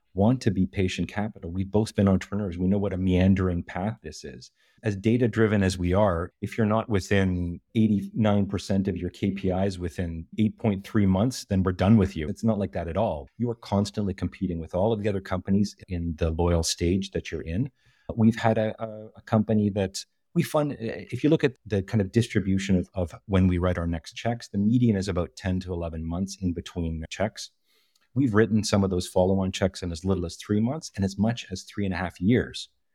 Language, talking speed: English, 215 wpm